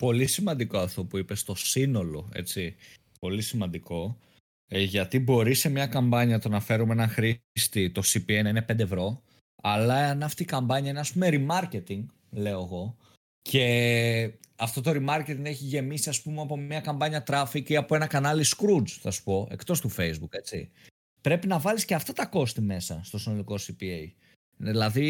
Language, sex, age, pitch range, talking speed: Greek, male, 20-39, 100-140 Hz, 175 wpm